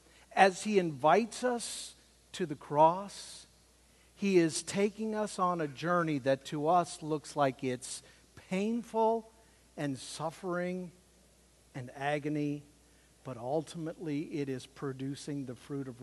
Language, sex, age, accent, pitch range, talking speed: English, male, 50-69, American, 145-235 Hz, 125 wpm